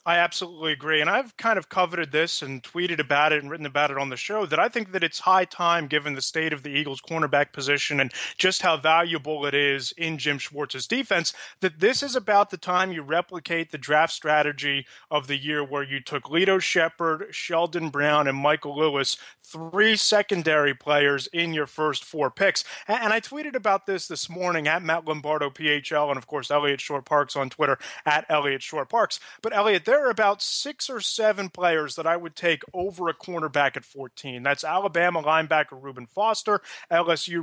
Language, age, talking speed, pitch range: English, 30-49, 200 wpm, 145-175 Hz